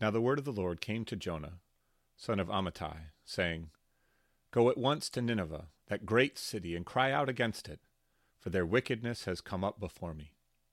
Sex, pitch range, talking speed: male, 80-105 Hz, 190 wpm